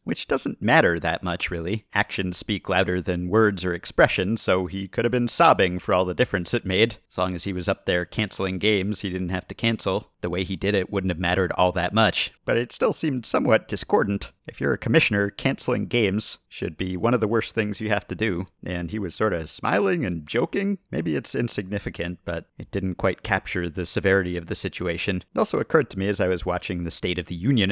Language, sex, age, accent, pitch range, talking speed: English, male, 50-69, American, 90-110 Hz, 235 wpm